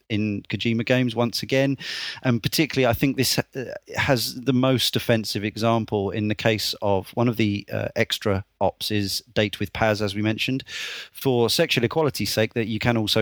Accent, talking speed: British, 180 wpm